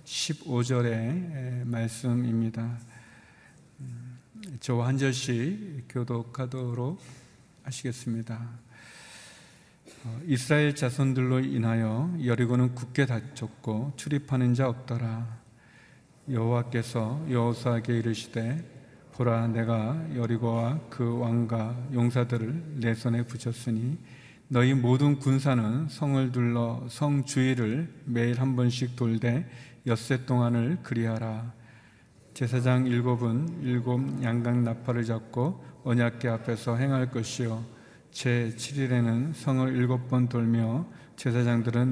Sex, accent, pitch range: male, native, 115-130 Hz